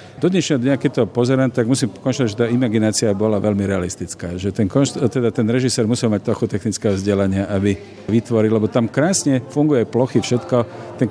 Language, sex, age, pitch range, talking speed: Slovak, male, 50-69, 105-125 Hz, 180 wpm